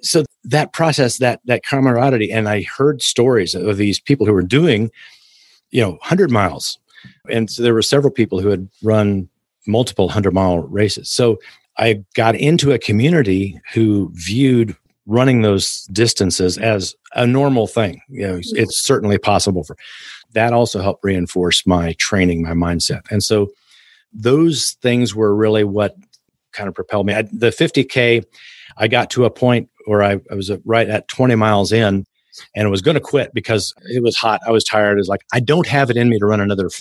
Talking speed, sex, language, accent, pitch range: 190 wpm, male, English, American, 100-125 Hz